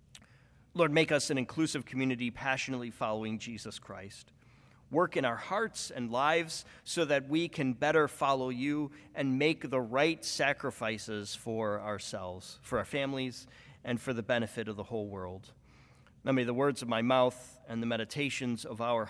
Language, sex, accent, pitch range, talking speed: English, male, American, 120-165 Hz, 165 wpm